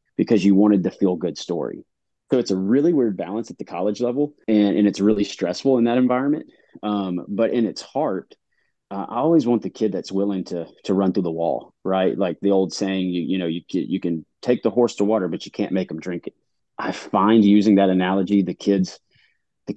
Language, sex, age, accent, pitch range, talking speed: English, male, 30-49, American, 95-105 Hz, 230 wpm